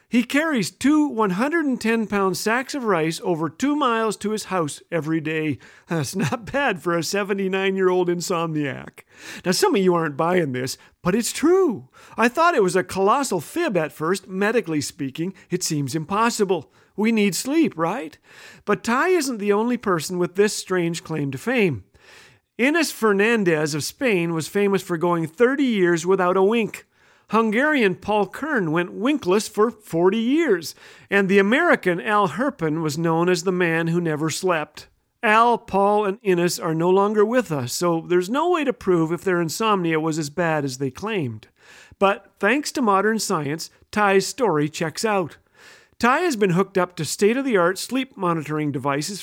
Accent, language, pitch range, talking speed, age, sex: American, English, 170-225 Hz, 170 wpm, 50-69, male